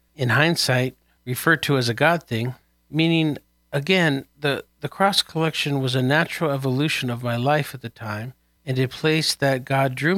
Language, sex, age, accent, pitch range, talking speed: English, male, 50-69, American, 120-150 Hz, 175 wpm